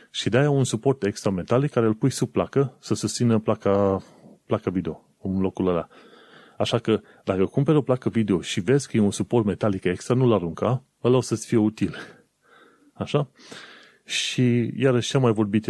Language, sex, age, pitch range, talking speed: Romanian, male, 30-49, 95-115 Hz, 180 wpm